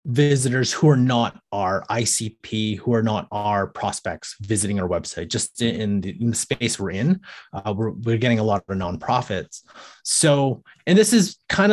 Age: 30-49